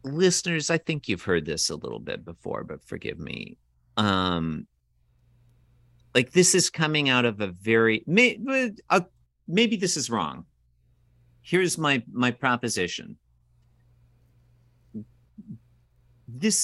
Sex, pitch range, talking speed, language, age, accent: male, 90-125 Hz, 115 wpm, English, 50-69, American